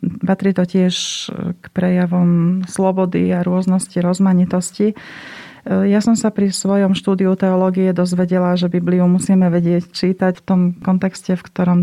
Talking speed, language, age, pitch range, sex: 135 wpm, Slovak, 30-49, 180-200 Hz, female